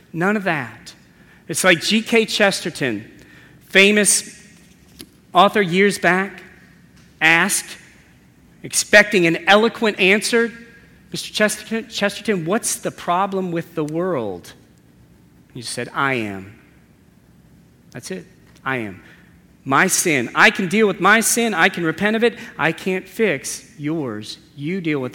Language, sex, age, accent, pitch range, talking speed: English, male, 40-59, American, 135-195 Hz, 125 wpm